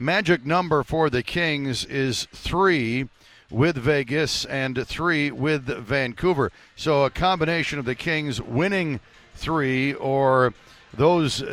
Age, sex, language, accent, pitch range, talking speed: 60-79, male, English, American, 125-160 Hz, 120 wpm